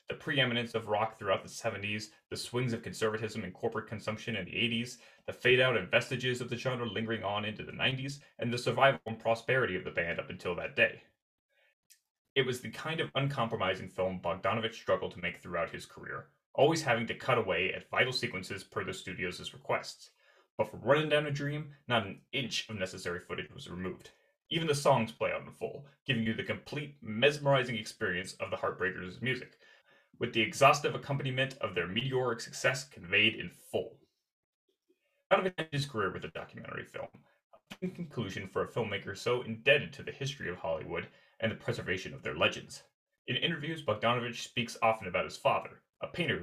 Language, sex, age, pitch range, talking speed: English, male, 30-49, 110-140 Hz, 185 wpm